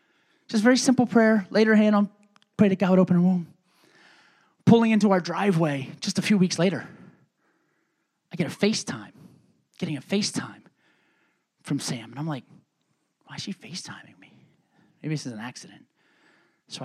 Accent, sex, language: American, male, English